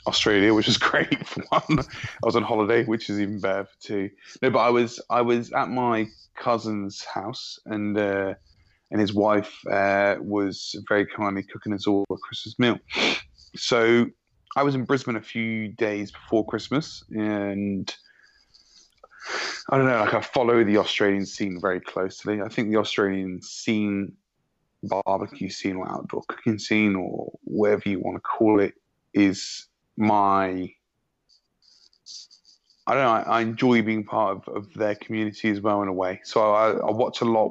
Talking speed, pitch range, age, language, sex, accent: 170 wpm, 100-115 Hz, 20-39, English, male, British